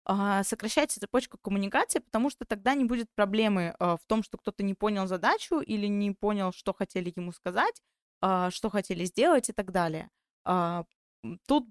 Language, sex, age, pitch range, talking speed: Russian, female, 20-39, 180-230 Hz, 155 wpm